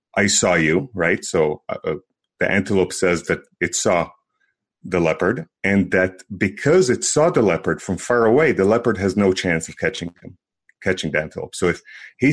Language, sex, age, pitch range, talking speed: English, male, 30-49, 90-105 Hz, 185 wpm